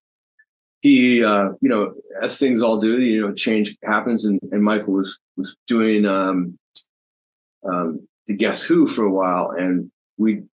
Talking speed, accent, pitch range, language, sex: 160 wpm, American, 105-140 Hz, English, male